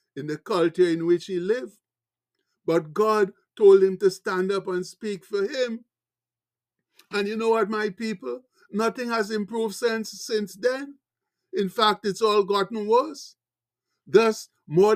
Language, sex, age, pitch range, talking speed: English, male, 60-79, 165-205 Hz, 155 wpm